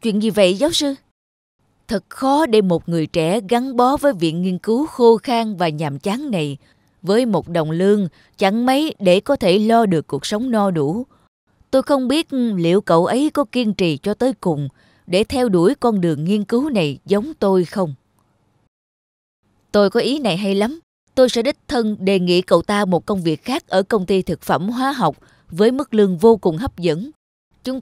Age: 20-39